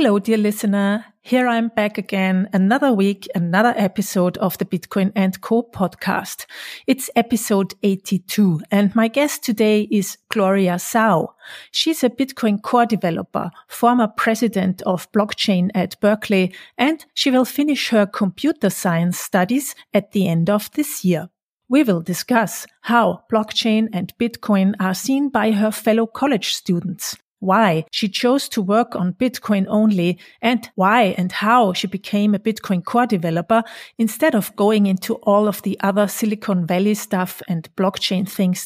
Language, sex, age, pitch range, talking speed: English, female, 40-59, 190-235 Hz, 150 wpm